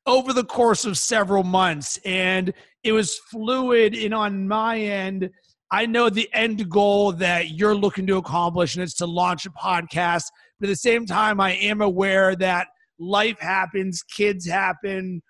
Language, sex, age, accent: English, male, 30-49, American